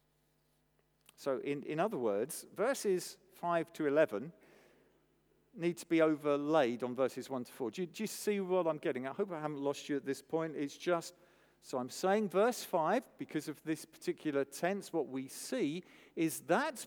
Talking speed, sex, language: 185 wpm, male, English